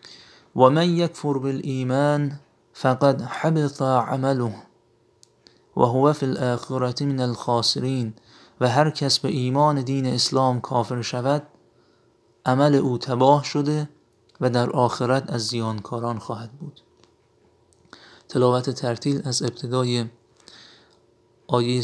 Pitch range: 130-155 Hz